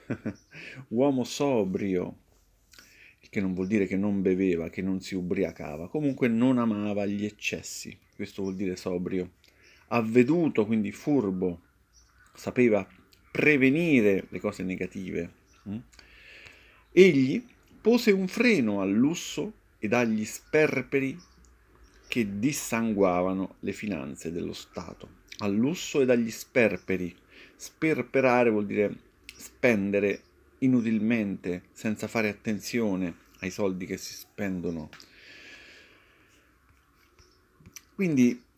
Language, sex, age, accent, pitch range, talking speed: Italian, male, 40-59, native, 95-125 Hz, 100 wpm